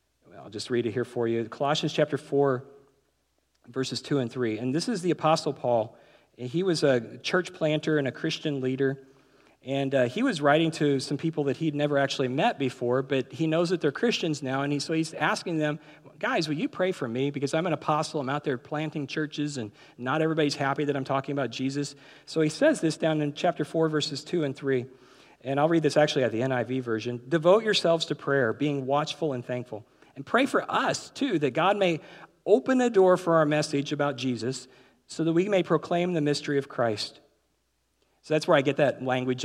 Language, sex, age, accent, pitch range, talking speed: English, male, 40-59, American, 130-160 Hz, 215 wpm